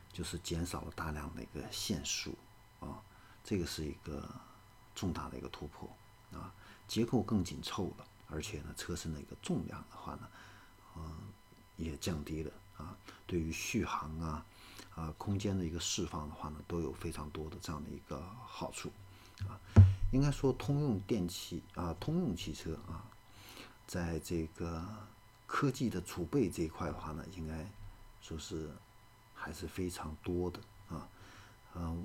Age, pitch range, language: 50-69, 80-100 Hz, Chinese